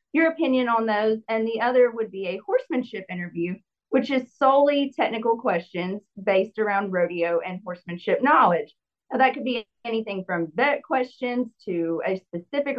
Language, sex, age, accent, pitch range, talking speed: English, female, 30-49, American, 195-260 Hz, 155 wpm